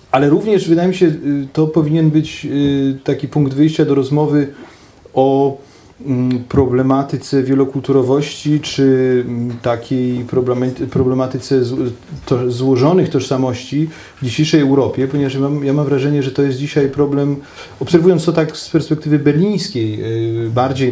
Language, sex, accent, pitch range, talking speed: Polish, male, native, 125-150 Hz, 115 wpm